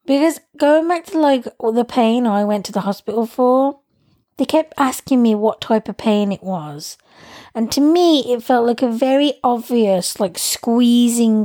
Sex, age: female, 20-39